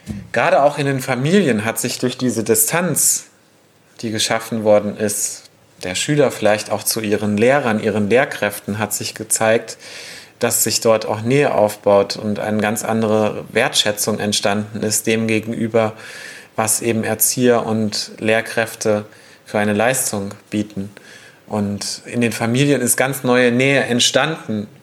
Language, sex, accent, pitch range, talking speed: German, male, German, 105-135 Hz, 145 wpm